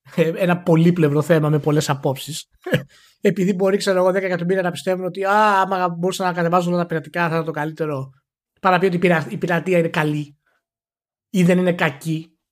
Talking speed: 180 wpm